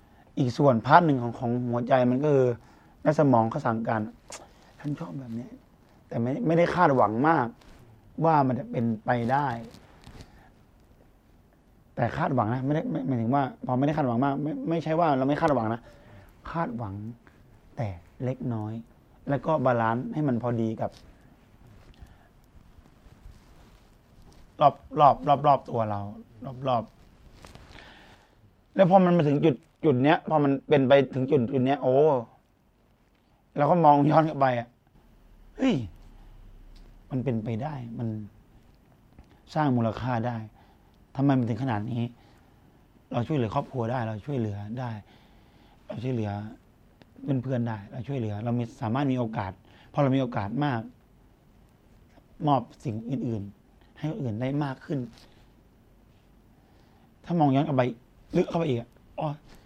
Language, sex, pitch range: English, male, 115-140 Hz